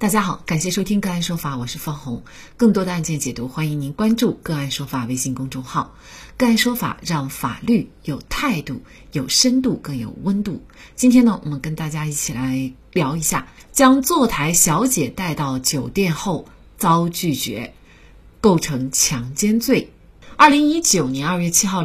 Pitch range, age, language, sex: 140-210 Hz, 30-49, Chinese, female